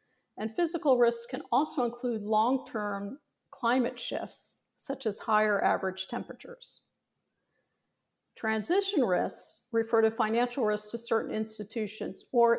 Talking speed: 115 wpm